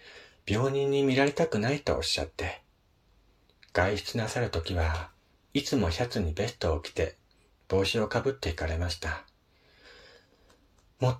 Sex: male